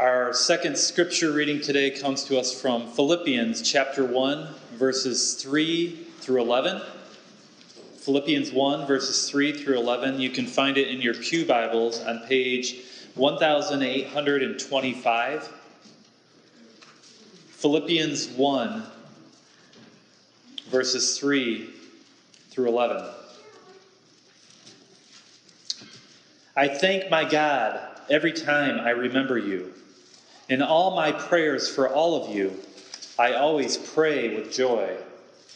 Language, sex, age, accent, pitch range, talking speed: English, male, 30-49, American, 130-170 Hz, 105 wpm